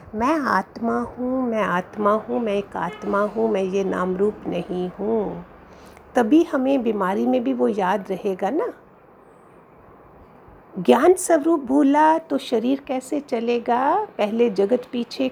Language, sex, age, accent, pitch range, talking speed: Hindi, female, 50-69, native, 210-270 Hz, 135 wpm